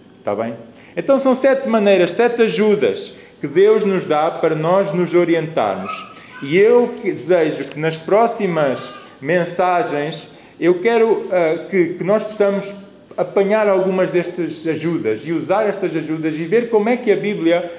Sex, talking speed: male, 155 wpm